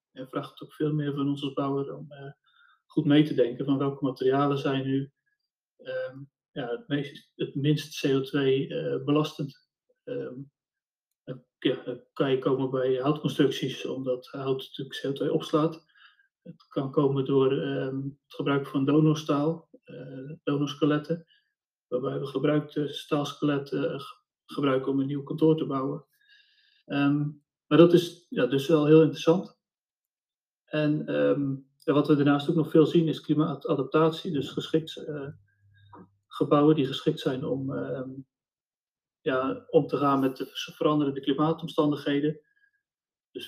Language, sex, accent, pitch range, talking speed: Dutch, male, Dutch, 135-160 Hz, 140 wpm